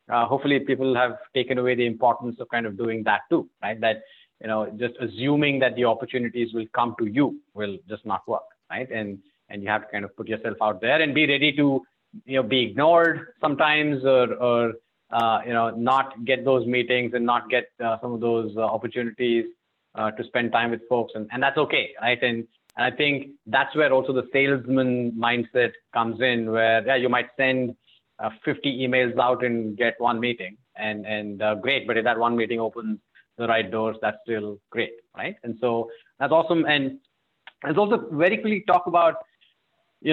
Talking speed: 200 wpm